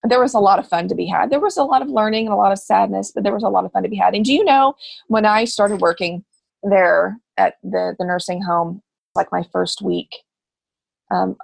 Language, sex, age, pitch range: English, female, 30-49, 185-275 Hz